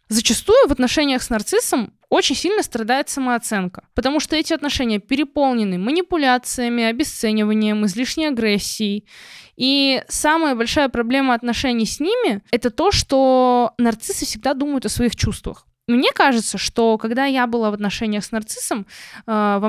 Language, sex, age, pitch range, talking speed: Russian, female, 20-39, 215-275 Hz, 140 wpm